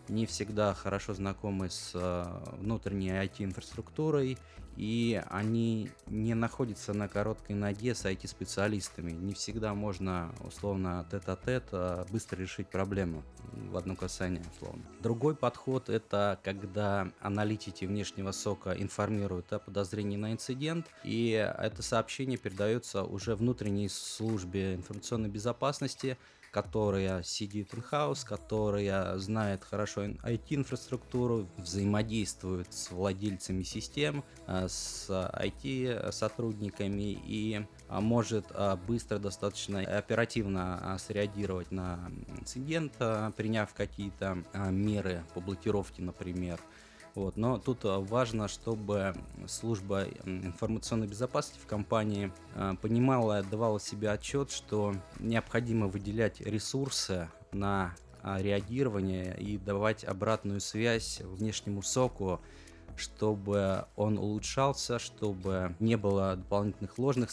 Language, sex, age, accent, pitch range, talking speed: Russian, male, 20-39, native, 95-110 Hz, 100 wpm